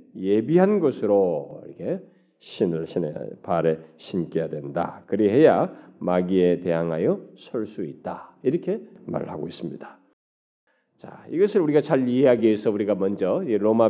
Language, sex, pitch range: Korean, male, 90-125 Hz